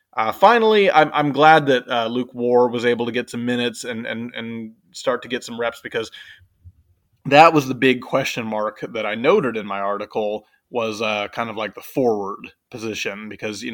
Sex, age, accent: male, 20-39, American